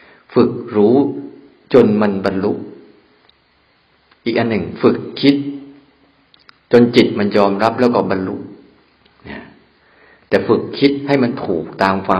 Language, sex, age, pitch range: Thai, male, 60-79, 95-135 Hz